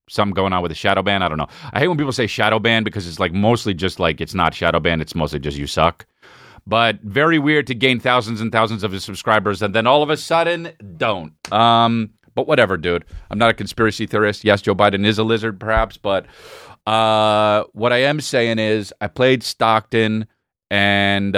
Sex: male